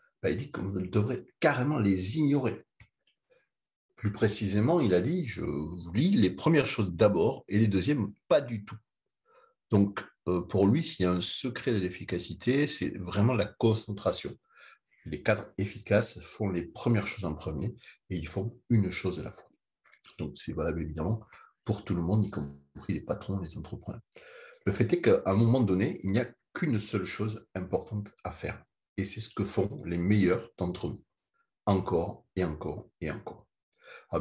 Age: 60-79